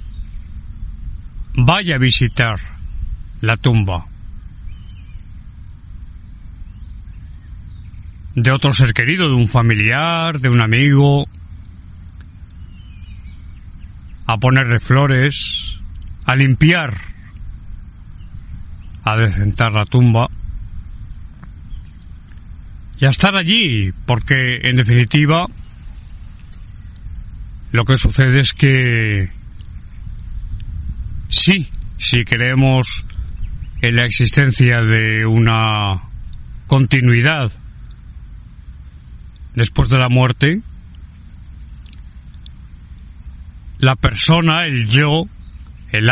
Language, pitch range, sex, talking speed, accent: Spanish, 85-125 Hz, male, 70 wpm, Spanish